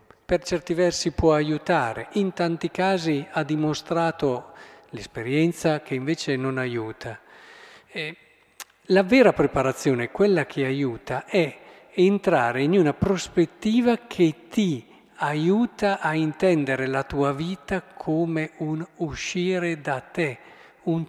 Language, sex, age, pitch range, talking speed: Italian, male, 50-69, 135-180 Hz, 115 wpm